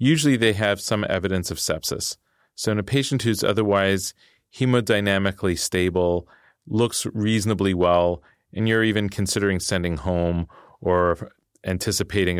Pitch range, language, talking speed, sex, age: 80-95 Hz, English, 125 wpm, male, 30-49